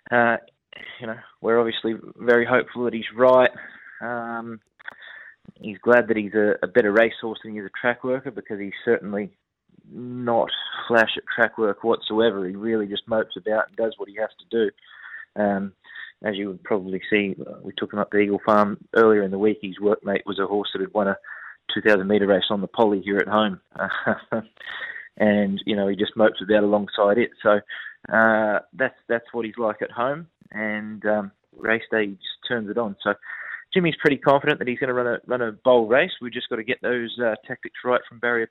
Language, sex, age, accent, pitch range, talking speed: English, male, 20-39, Australian, 105-120 Hz, 205 wpm